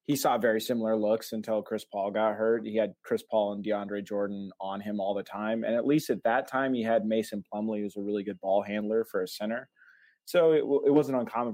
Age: 20-39